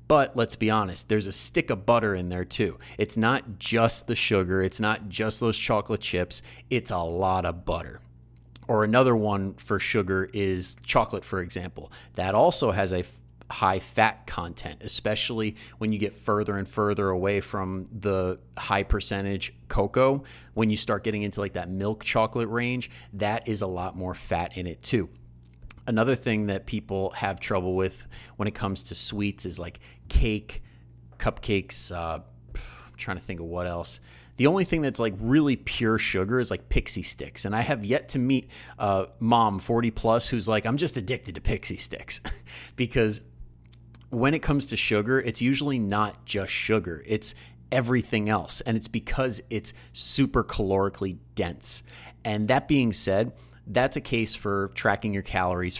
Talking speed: 175 wpm